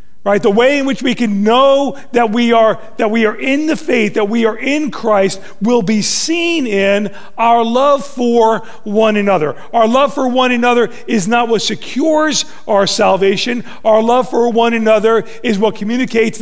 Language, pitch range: English, 200-240 Hz